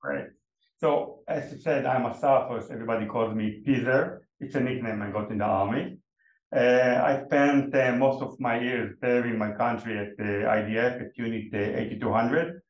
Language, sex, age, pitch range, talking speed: English, male, 50-69, 110-130 Hz, 185 wpm